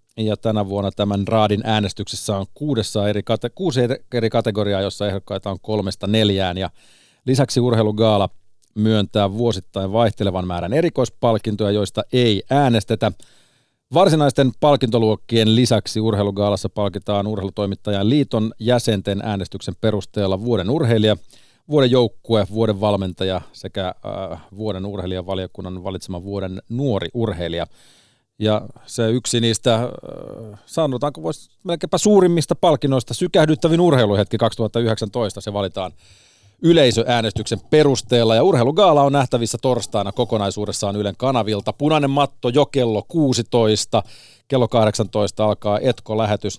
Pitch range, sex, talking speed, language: 100-120 Hz, male, 110 wpm, Finnish